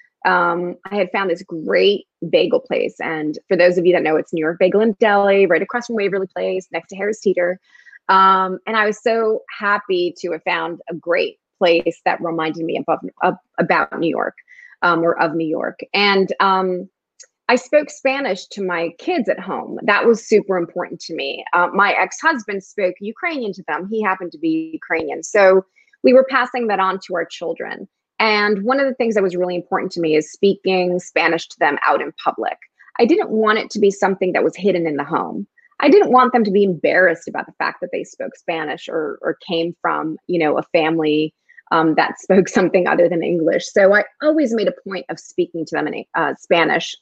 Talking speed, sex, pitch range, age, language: 210 wpm, female, 180-240 Hz, 20-39, English